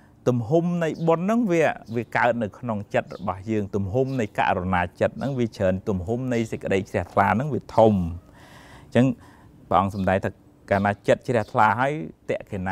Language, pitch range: English, 95-120 Hz